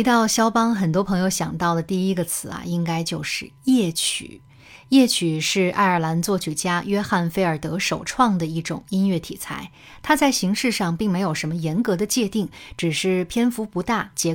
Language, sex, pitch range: Chinese, female, 165-210 Hz